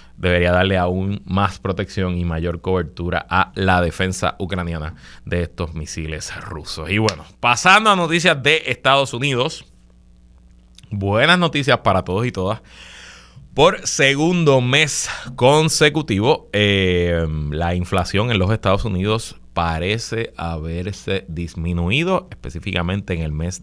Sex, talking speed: male, 120 wpm